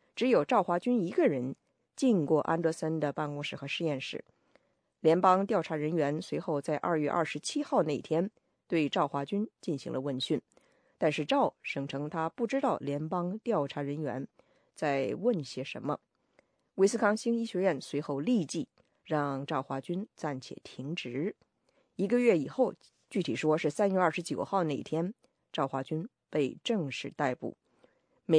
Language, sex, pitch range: English, female, 150-215 Hz